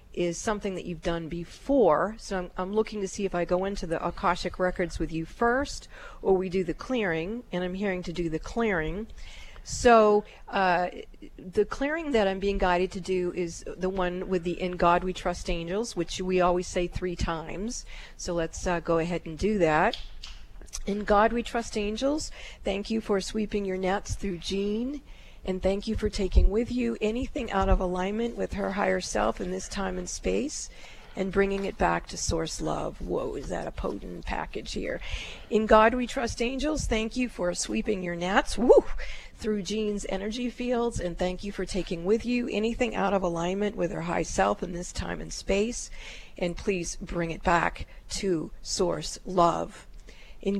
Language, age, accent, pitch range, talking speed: English, 40-59, American, 175-220 Hz, 190 wpm